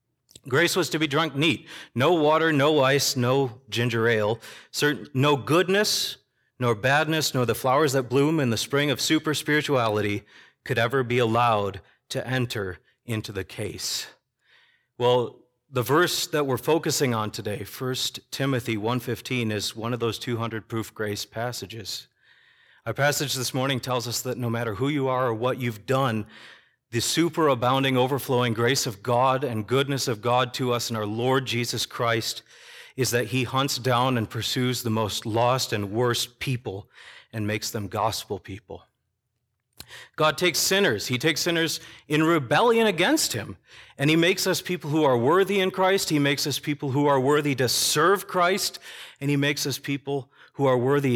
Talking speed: 170 wpm